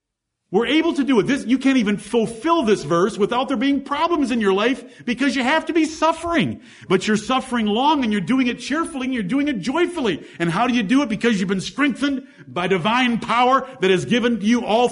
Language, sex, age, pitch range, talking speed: English, male, 50-69, 200-255 Hz, 230 wpm